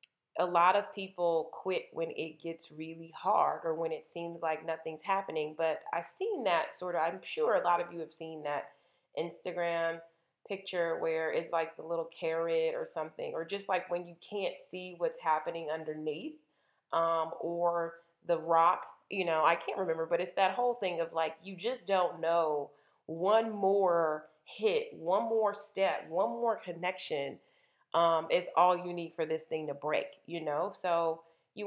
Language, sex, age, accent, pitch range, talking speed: English, female, 30-49, American, 165-195 Hz, 180 wpm